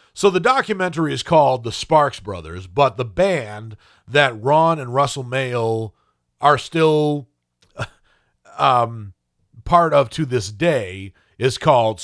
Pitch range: 110-150 Hz